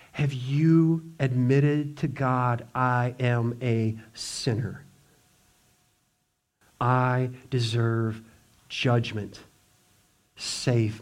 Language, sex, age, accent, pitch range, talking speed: English, male, 50-69, American, 125-190 Hz, 70 wpm